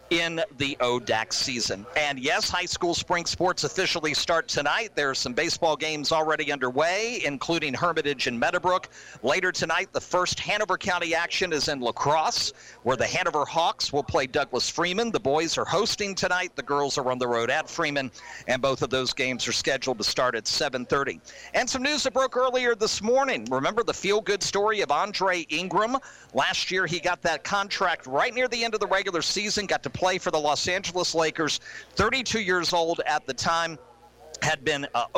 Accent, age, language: American, 50-69, English